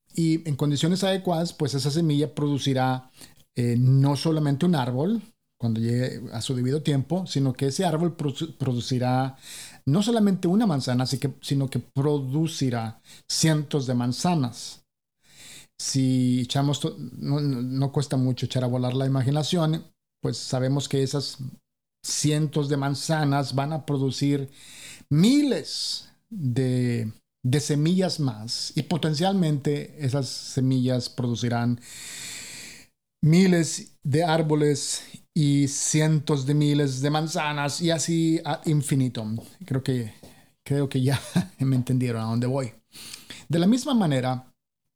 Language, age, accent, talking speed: English, 50-69, Mexican, 125 wpm